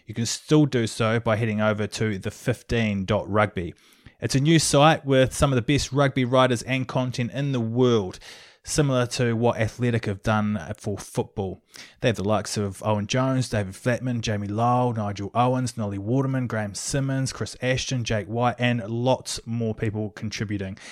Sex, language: male, English